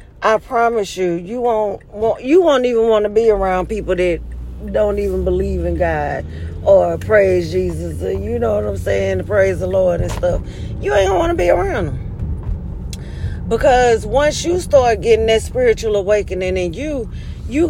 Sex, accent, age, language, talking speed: female, American, 40-59, English, 185 wpm